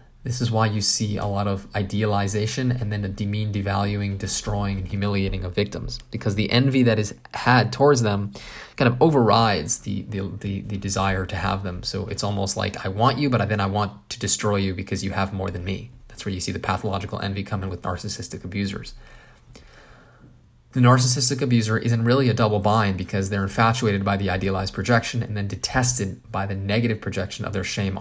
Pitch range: 100-115 Hz